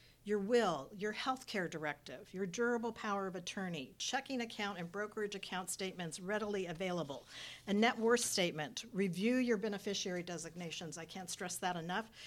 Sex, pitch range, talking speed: female, 170-210 Hz, 155 wpm